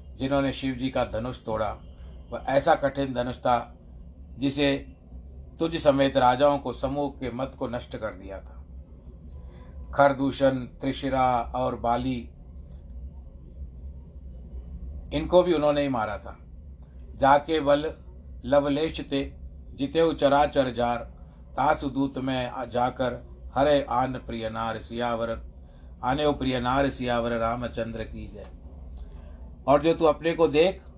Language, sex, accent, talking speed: Hindi, male, native, 115 wpm